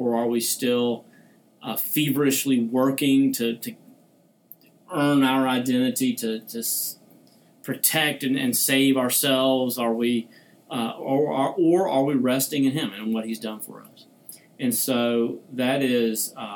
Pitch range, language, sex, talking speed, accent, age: 120-145 Hz, English, male, 150 wpm, American, 40-59